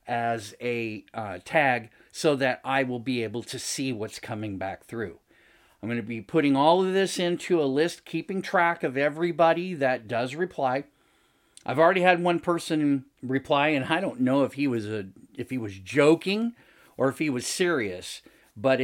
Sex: male